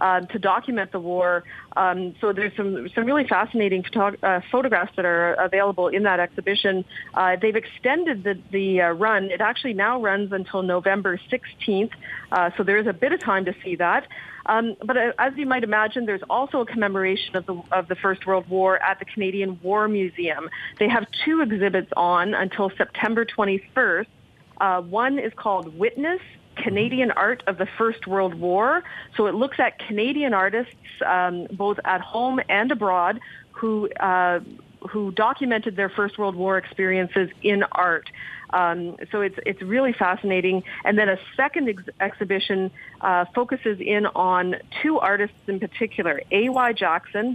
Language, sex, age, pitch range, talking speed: English, female, 30-49, 185-225 Hz, 170 wpm